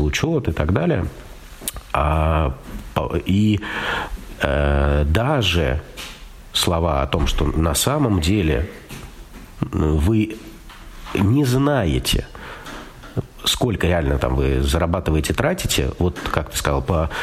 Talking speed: 100 wpm